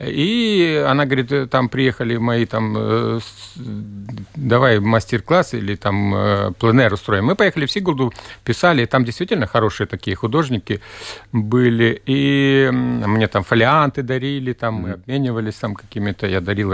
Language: Russian